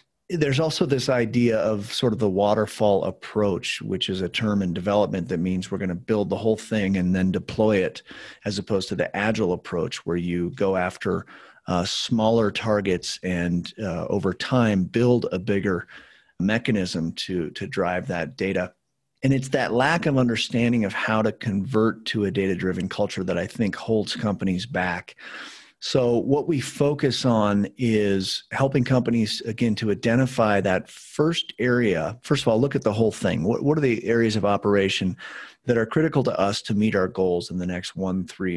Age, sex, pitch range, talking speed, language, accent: 40-59, male, 95-125 Hz, 185 wpm, English, American